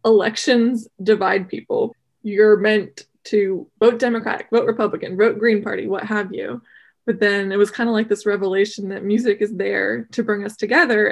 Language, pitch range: English, 205-235 Hz